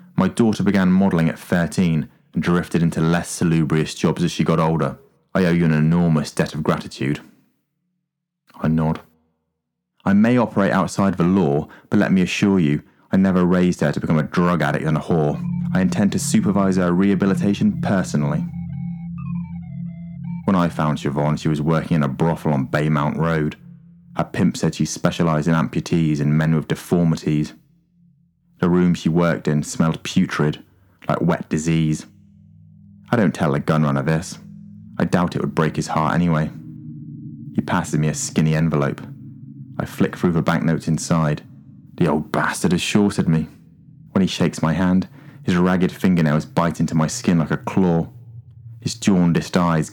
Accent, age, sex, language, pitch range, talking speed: British, 30-49, male, English, 80-125 Hz, 170 wpm